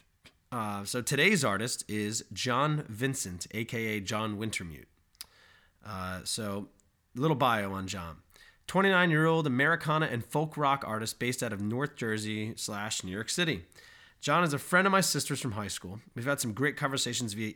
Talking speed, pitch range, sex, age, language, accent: 170 wpm, 95-125 Hz, male, 30-49, English, American